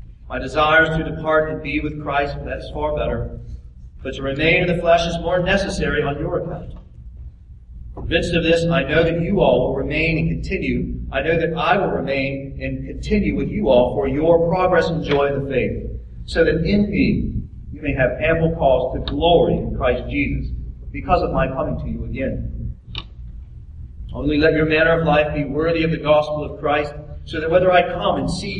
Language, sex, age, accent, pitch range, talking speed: English, male, 40-59, American, 125-160 Hz, 205 wpm